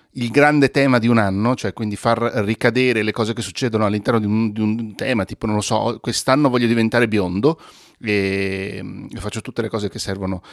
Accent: native